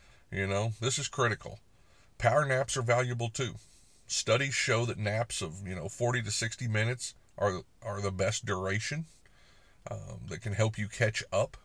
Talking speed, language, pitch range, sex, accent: 170 wpm, English, 100-125 Hz, male, American